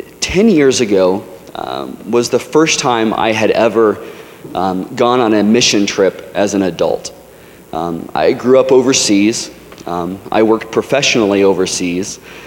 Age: 30-49